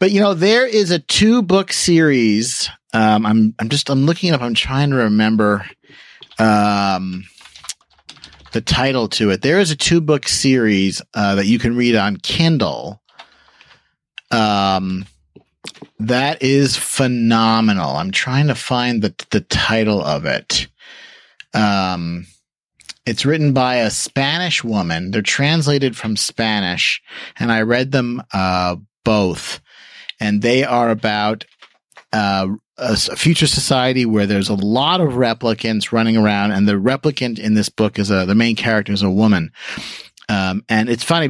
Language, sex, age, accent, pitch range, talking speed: English, male, 30-49, American, 105-130 Hz, 150 wpm